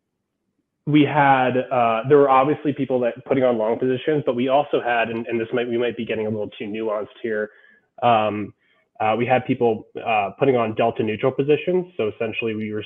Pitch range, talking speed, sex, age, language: 110-130 Hz, 205 wpm, male, 20-39, English